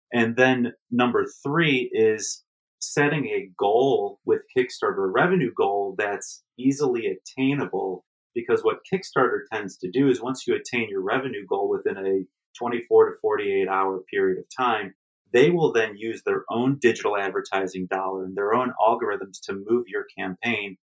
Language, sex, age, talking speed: English, male, 30-49, 155 wpm